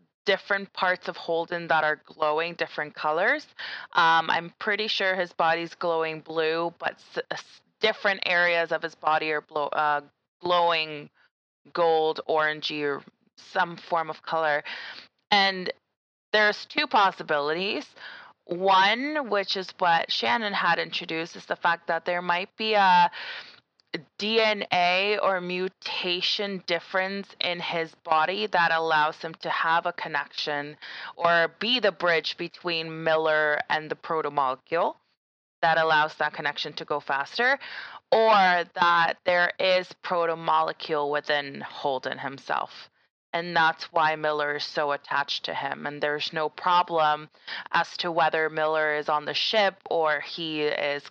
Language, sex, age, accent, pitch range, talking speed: English, female, 20-39, American, 155-185 Hz, 135 wpm